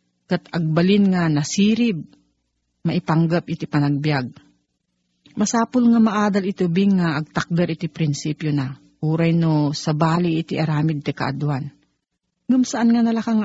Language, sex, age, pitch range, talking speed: Filipino, female, 40-59, 155-195 Hz, 115 wpm